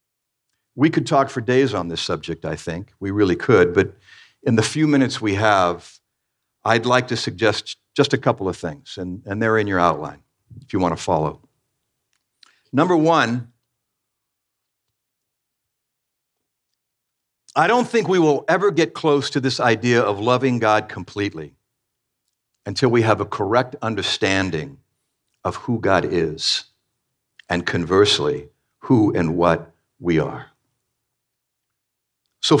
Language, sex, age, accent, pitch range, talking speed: English, male, 60-79, American, 110-140 Hz, 140 wpm